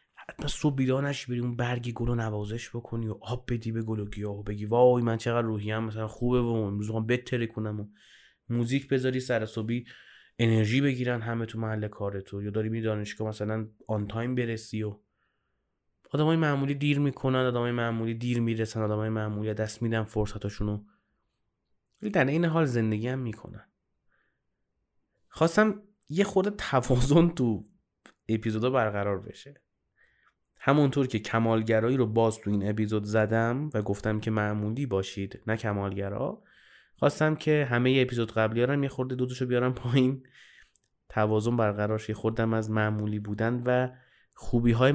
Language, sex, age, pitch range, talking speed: Persian, male, 20-39, 110-130 Hz, 150 wpm